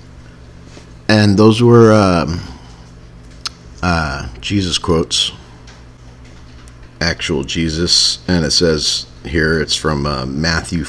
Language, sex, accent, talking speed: English, male, American, 95 wpm